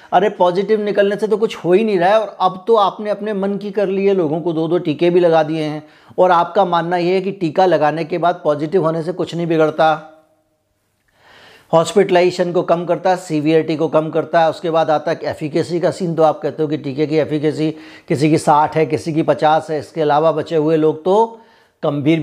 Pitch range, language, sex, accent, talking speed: 155-190 Hz, Hindi, male, native, 225 wpm